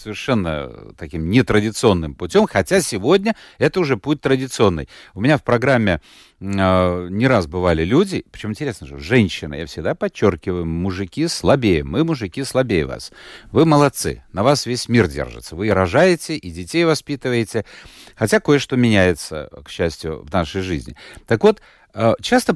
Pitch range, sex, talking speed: 95-160 Hz, male, 150 wpm